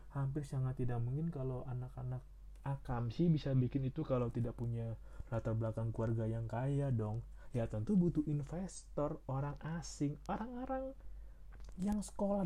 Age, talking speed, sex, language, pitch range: 30-49, 140 wpm, male, Indonesian, 115-165 Hz